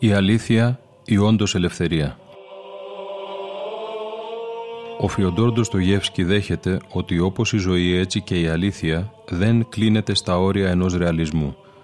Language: Greek